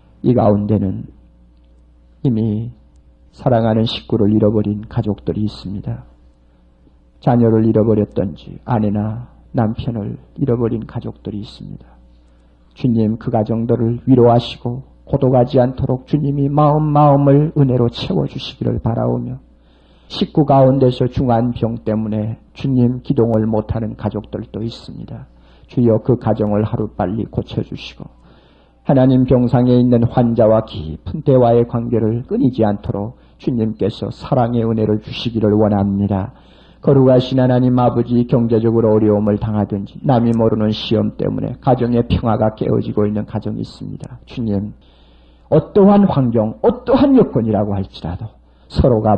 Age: 50-69